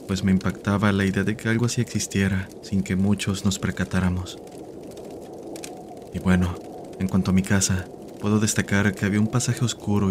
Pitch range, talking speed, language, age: 95-110 Hz, 170 wpm, Spanish, 30-49